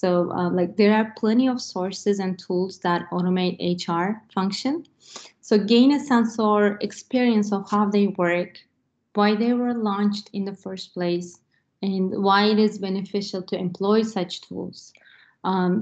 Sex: female